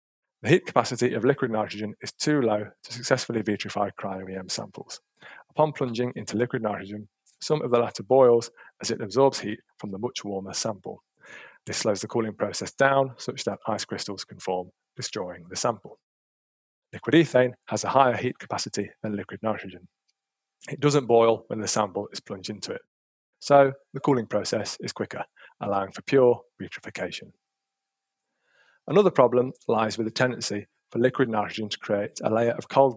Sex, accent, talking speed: male, British, 170 wpm